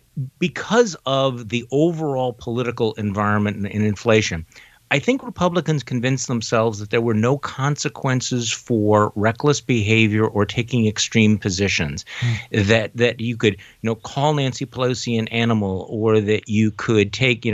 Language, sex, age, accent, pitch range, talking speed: English, male, 50-69, American, 110-145 Hz, 145 wpm